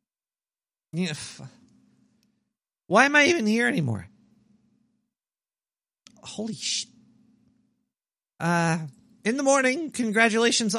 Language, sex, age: English, male, 40-59